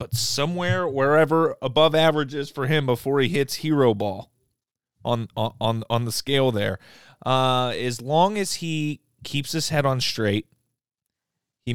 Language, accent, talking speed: English, American, 150 wpm